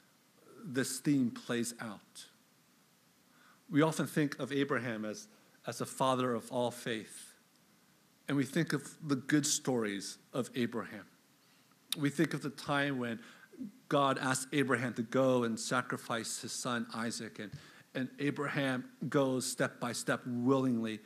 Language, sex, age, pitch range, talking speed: English, male, 50-69, 120-140 Hz, 140 wpm